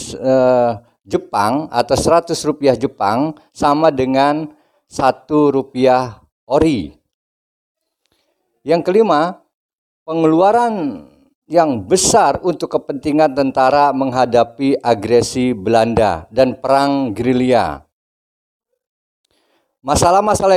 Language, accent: Indonesian, native